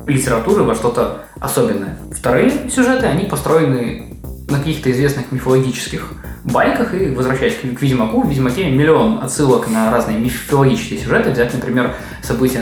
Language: Russian